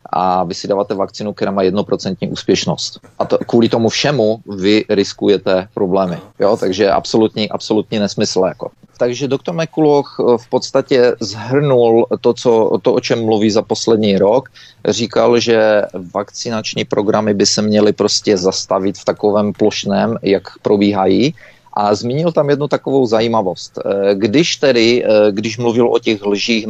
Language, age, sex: Czech, 30-49, male